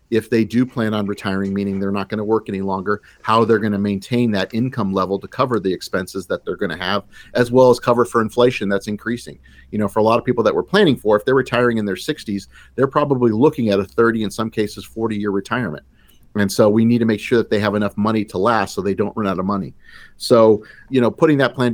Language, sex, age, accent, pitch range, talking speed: English, male, 40-59, American, 100-120 Hz, 260 wpm